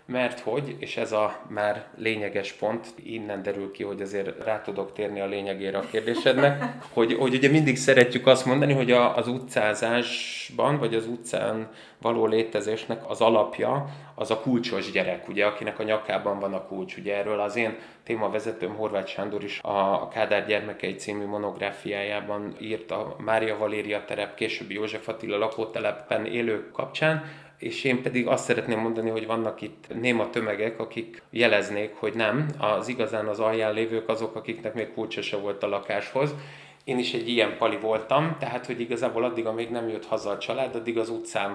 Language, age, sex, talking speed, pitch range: Hungarian, 20-39, male, 170 wpm, 105-120 Hz